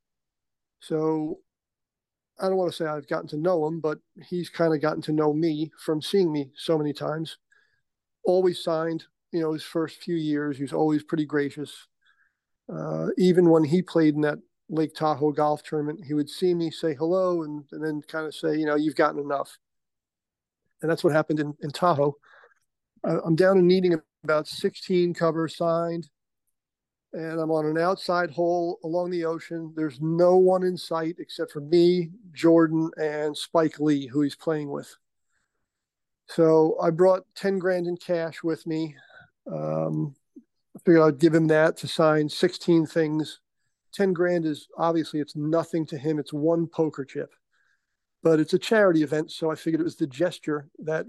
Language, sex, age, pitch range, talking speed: English, male, 40-59, 155-175 Hz, 175 wpm